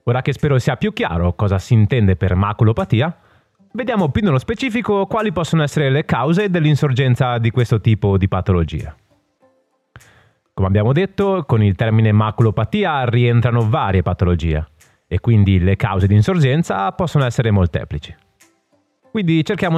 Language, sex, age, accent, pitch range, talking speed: Italian, male, 30-49, native, 100-160 Hz, 145 wpm